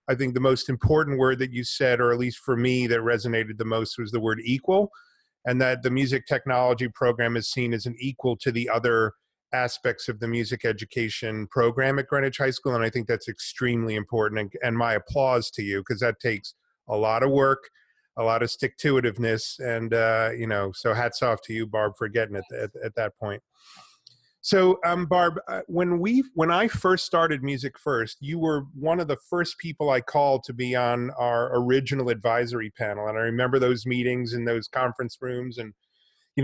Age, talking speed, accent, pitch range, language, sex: 30-49, 205 wpm, American, 120-140 Hz, English, male